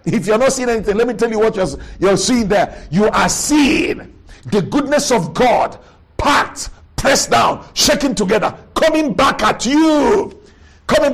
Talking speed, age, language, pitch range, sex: 165 wpm, 50-69, English, 195-260 Hz, male